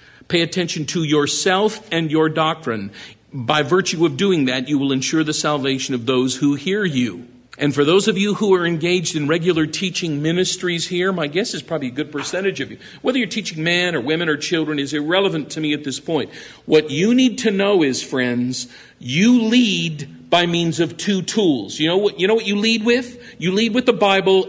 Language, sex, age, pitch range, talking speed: English, male, 50-69, 135-195 Hz, 215 wpm